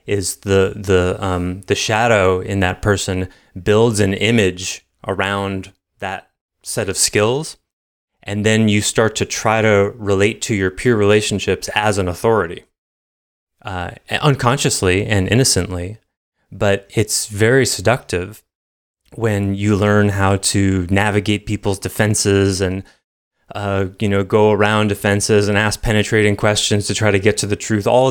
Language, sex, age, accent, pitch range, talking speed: English, male, 20-39, American, 95-115 Hz, 145 wpm